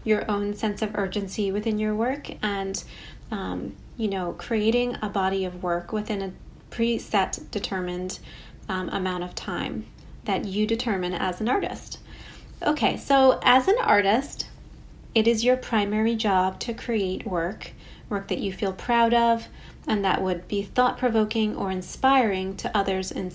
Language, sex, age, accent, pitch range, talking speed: English, female, 30-49, American, 195-235 Hz, 155 wpm